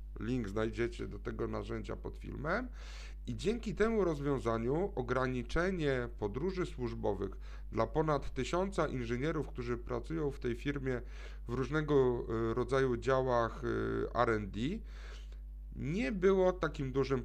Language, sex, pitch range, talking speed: Polish, male, 110-150 Hz, 110 wpm